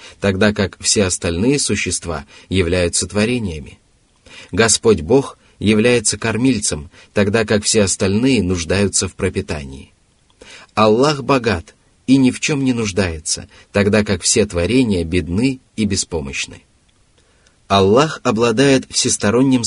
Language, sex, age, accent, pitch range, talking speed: Russian, male, 30-49, native, 95-120 Hz, 110 wpm